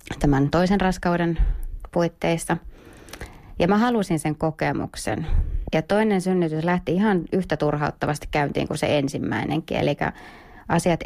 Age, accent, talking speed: 30-49, native, 120 wpm